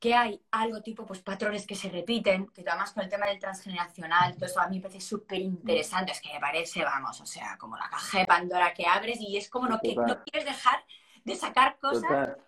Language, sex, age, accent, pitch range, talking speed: Spanish, female, 20-39, Spanish, 200-285 Hz, 230 wpm